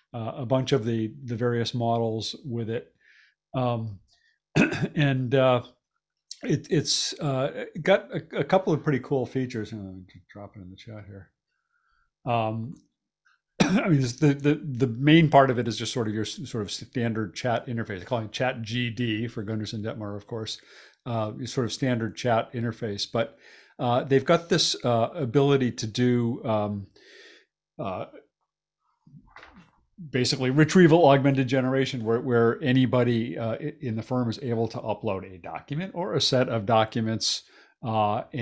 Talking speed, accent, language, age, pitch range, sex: 160 wpm, American, English, 50-69, 110-130 Hz, male